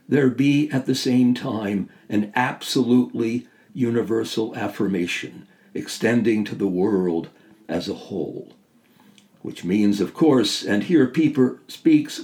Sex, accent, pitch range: male, American, 100-135 Hz